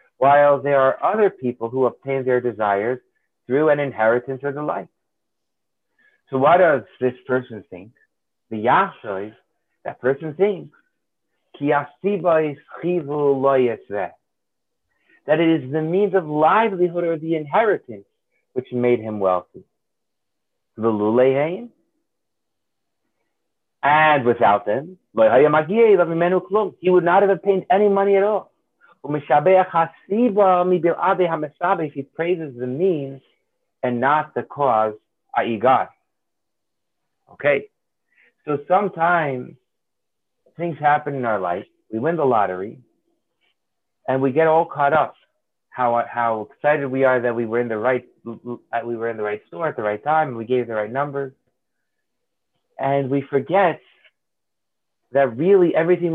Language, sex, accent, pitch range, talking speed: English, male, American, 125-175 Hz, 120 wpm